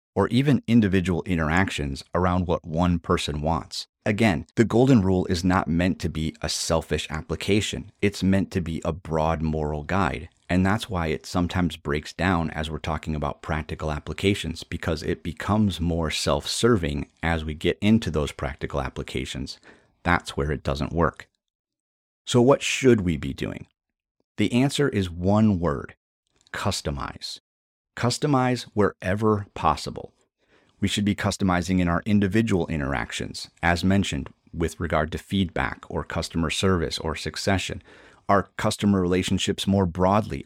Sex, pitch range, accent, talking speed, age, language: male, 80-100 Hz, American, 145 wpm, 30-49, English